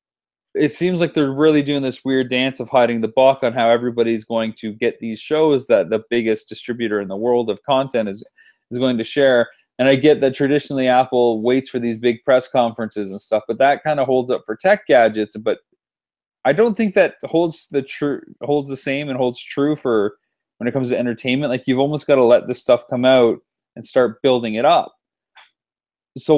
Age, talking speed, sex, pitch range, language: 20-39, 215 wpm, male, 115-135 Hz, English